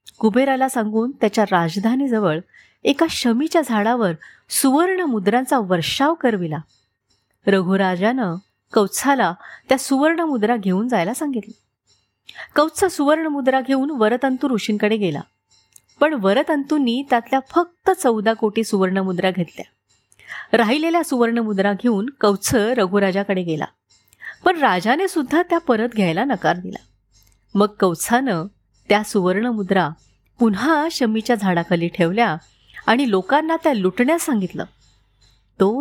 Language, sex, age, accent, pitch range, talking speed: Marathi, female, 30-49, native, 180-250 Hz, 100 wpm